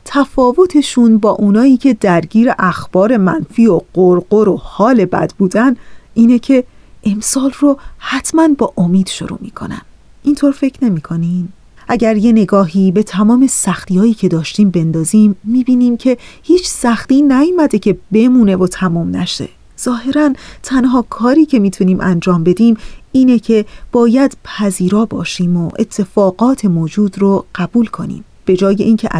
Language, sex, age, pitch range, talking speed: Persian, female, 30-49, 190-250 Hz, 140 wpm